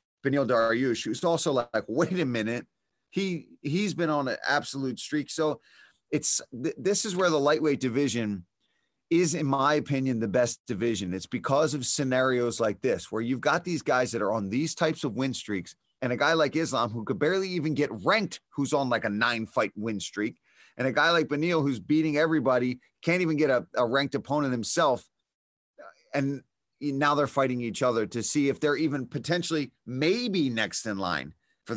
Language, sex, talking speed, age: English, male, 195 wpm, 30-49